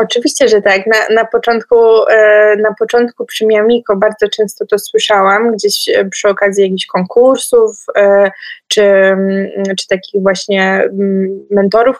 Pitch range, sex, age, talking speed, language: 205-235 Hz, female, 20-39, 120 wpm, Polish